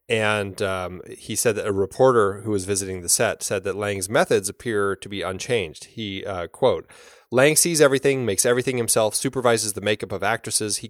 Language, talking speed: English, 195 wpm